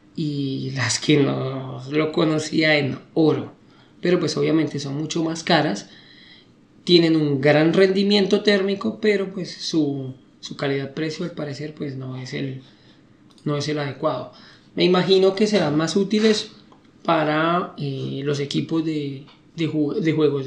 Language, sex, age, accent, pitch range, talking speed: Spanish, male, 20-39, Spanish, 145-185 Hz, 145 wpm